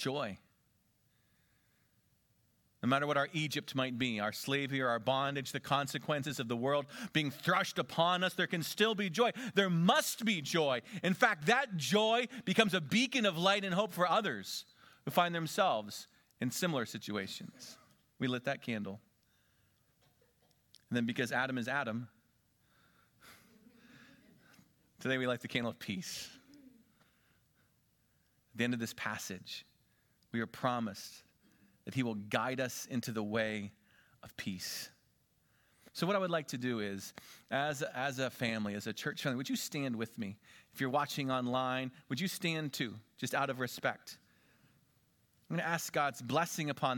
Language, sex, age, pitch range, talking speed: English, male, 40-59, 125-180 Hz, 160 wpm